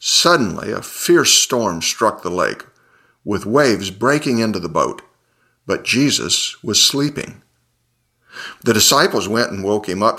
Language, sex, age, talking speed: English, male, 50-69, 140 wpm